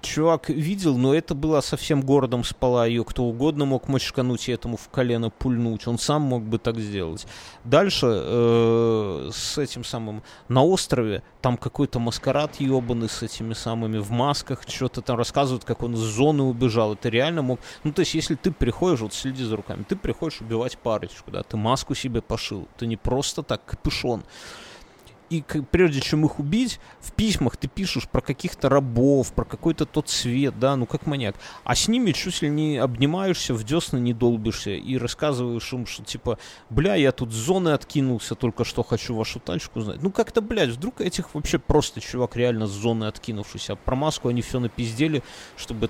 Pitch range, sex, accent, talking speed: 115-150 Hz, male, native, 185 wpm